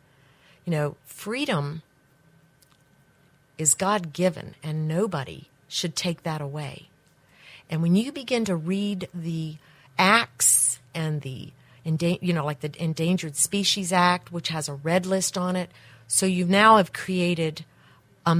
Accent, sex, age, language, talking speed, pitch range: American, female, 50-69, English, 135 wpm, 150-180 Hz